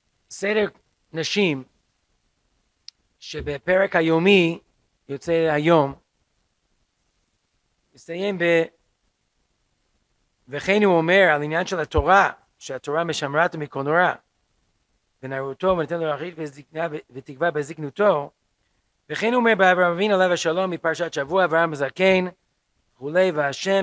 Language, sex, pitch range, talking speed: Hebrew, male, 135-190 Hz, 95 wpm